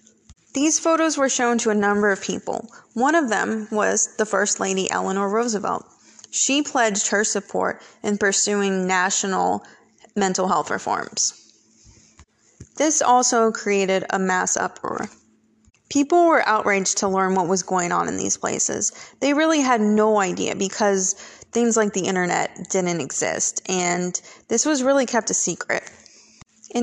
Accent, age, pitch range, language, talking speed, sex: American, 20-39, 190-225 Hz, English, 150 wpm, female